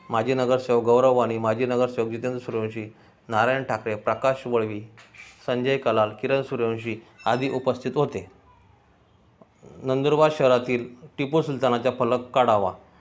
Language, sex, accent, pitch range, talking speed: Marathi, male, native, 115-130 Hz, 110 wpm